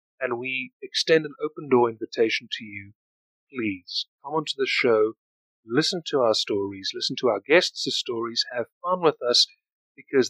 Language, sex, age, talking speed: English, male, 30-49, 155 wpm